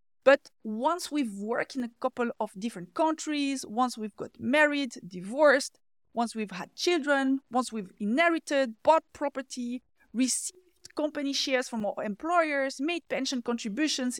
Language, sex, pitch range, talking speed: English, female, 220-275 Hz, 140 wpm